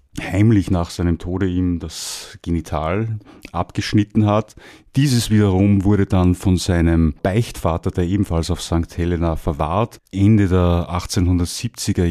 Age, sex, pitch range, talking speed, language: 30-49, male, 90-110 Hz, 125 wpm, German